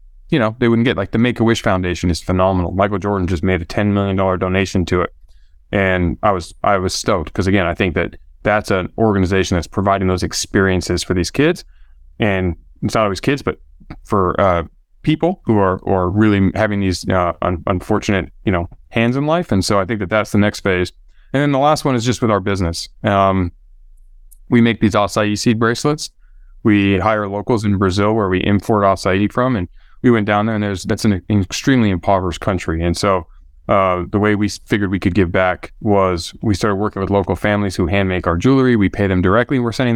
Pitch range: 90-110 Hz